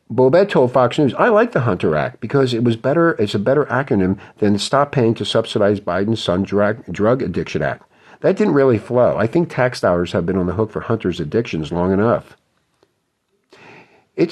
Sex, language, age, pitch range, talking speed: male, English, 50-69, 100-140 Hz, 195 wpm